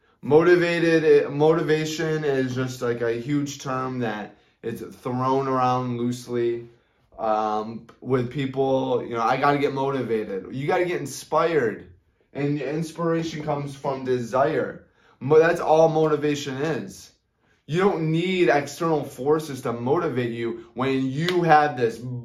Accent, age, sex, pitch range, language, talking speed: American, 20-39, male, 120-155 Hz, English, 140 wpm